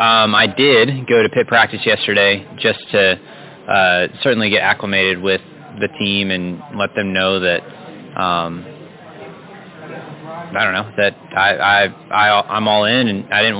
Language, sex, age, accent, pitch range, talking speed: English, male, 20-39, American, 100-115 Hz, 160 wpm